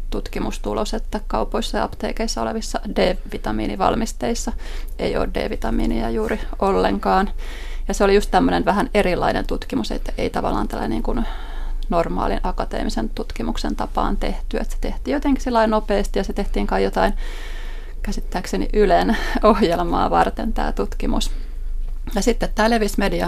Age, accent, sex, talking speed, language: 20-39, native, female, 130 wpm, Finnish